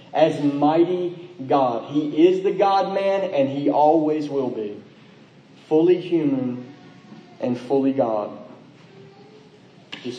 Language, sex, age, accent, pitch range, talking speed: English, male, 30-49, American, 135-180 Hz, 110 wpm